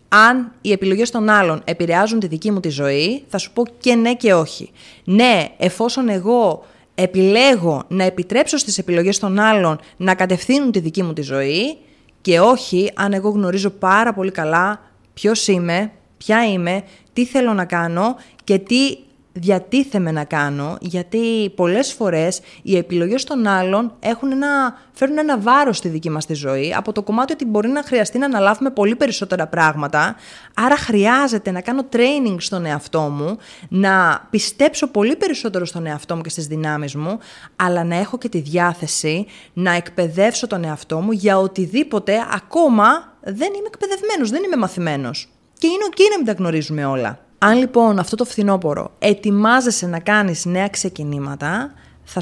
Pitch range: 170-230 Hz